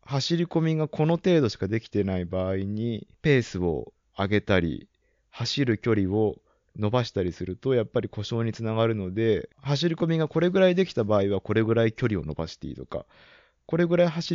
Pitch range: 100-140 Hz